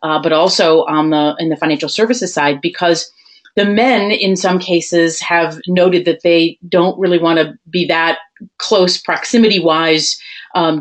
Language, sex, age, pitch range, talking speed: English, female, 30-49, 160-200 Hz, 165 wpm